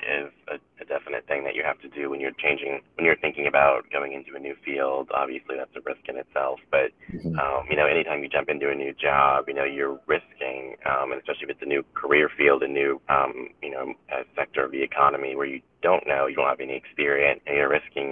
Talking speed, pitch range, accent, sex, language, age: 240 wpm, 70-75 Hz, American, male, English, 30-49